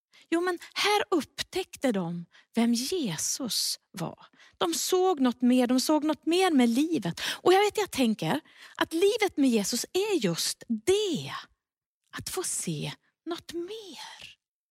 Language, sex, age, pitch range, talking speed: Swedish, female, 30-49, 225-335 Hz, 145 wpm